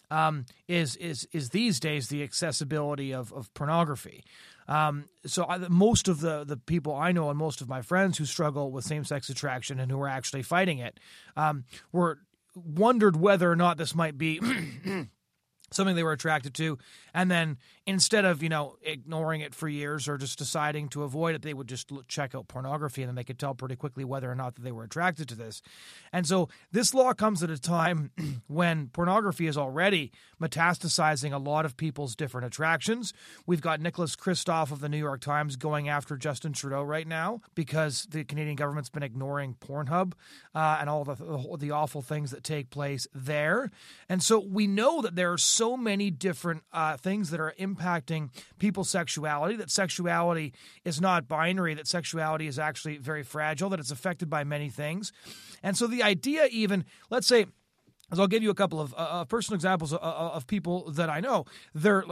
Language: English